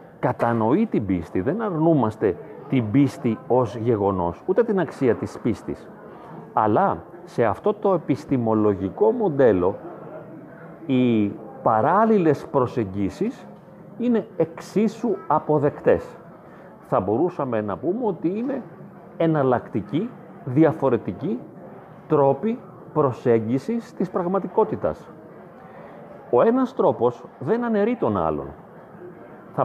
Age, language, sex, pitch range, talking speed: 40-59, Greek, male, 120-190 Hz, 95 wpm